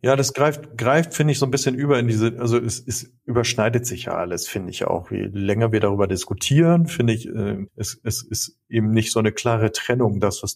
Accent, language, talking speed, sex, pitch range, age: German, German, 235 wpm, male, 100-120 Hz, 40-59